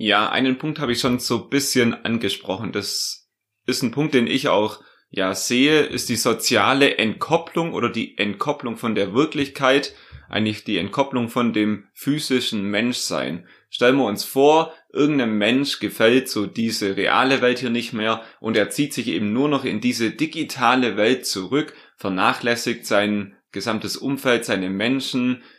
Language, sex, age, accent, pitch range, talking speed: German, male, 30-49, German, 105-135 Hz, 160 wpm